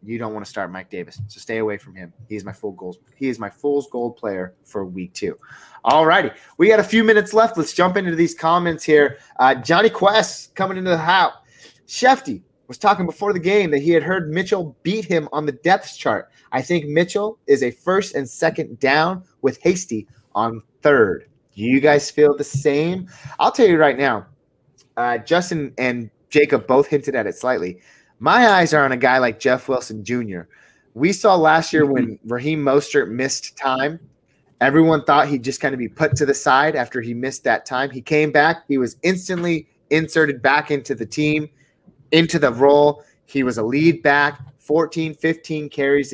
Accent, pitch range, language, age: American, 130-165 Hz, English, 30-49